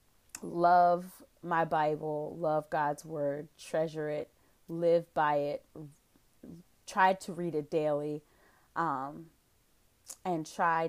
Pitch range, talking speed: 160-195 Hz, 105 wpm